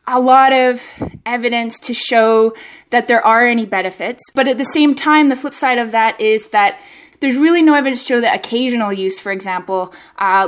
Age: 10-29